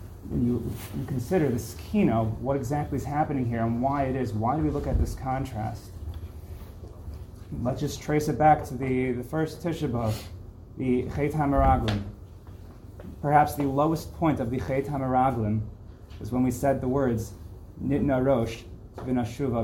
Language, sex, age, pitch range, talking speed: English, male, 30-49, 95-140 Hz, 160 wpm